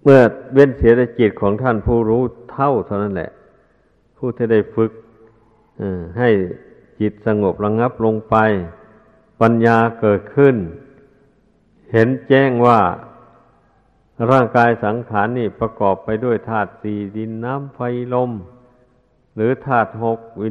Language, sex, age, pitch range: Thai, male, 60-79, 110-125 Hz